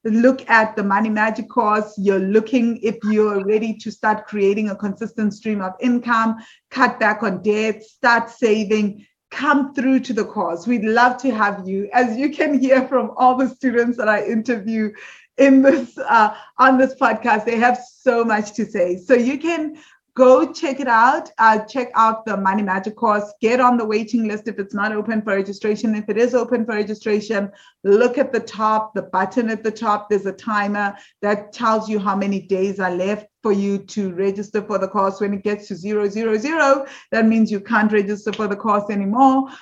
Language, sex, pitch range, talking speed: English, female, 200-235 Hz, 200 wpm